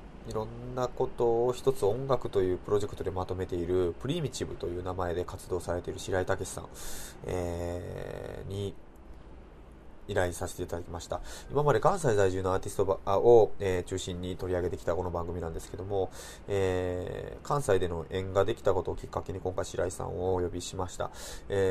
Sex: male